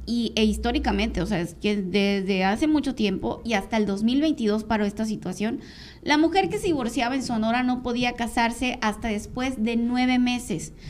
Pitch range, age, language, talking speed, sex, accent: 210-250 Hz, 20-39, Spanish, 180 wpm, female, Mexican